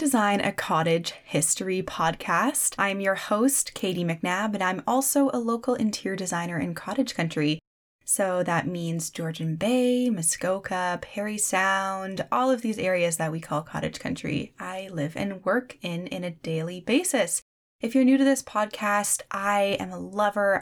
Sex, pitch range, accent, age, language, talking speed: female, 170-230 Hz, American, 10-29, English, 165 wpm